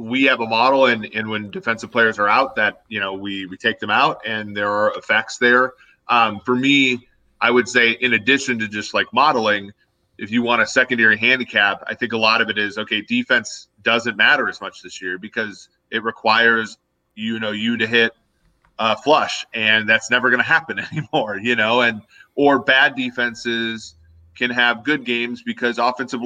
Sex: male